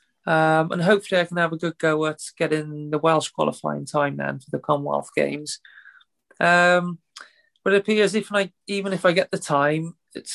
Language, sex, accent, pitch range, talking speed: English, male, British, 155-185 Hz, 190 wpm